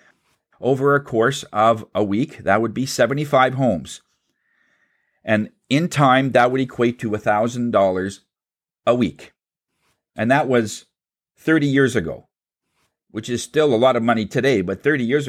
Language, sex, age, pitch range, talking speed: English, male, 40-59, 110-140 Hz, 150 wpm